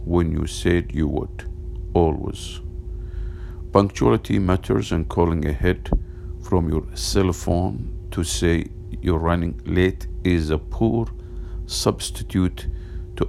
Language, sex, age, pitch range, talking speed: English, male, 50-69, 85-95 Hz, 115 wpm